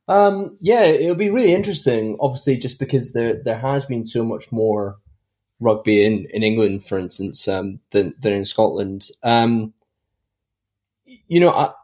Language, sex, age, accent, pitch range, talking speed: English, male, 20-39, British, 105-125 Hz, 150 wpm